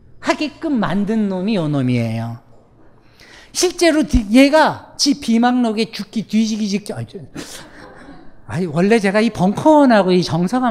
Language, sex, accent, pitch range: Korean, male, native, 150-230 Hz